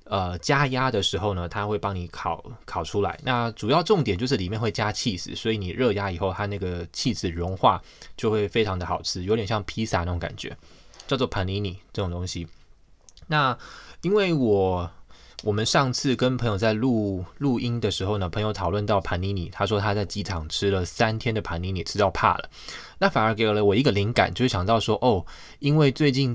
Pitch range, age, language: 90-120 Hz, 20-39, Chinese